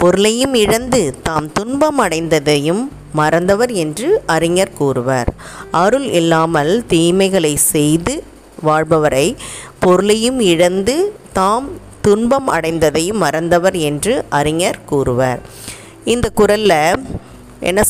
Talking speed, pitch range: 85 wpm, 150-205 Hz